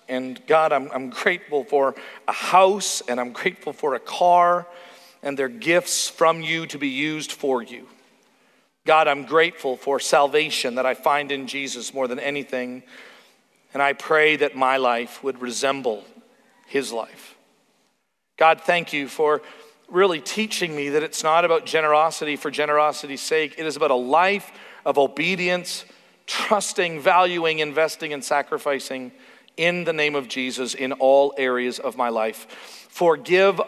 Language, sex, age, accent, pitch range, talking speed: English, male, 40-59, American, 130-160 Hz, 155 wpm